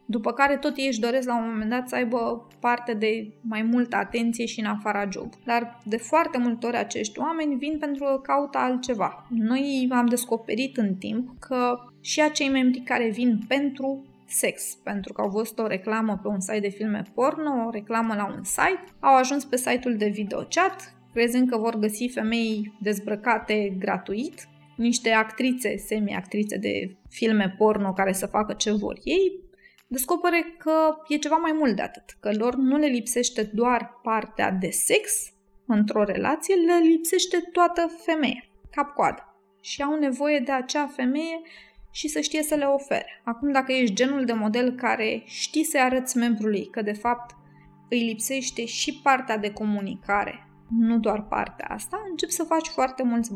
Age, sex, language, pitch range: 20-39, female, Romanian, 215-280 Hz